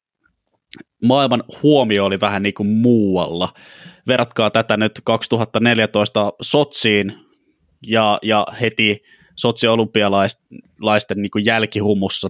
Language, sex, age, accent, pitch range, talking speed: Finnish, male, 20-39, native, 105-115 Hz, 85 wpm